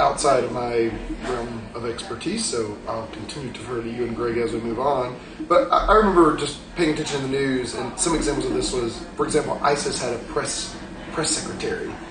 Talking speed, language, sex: 215 wpm, English, male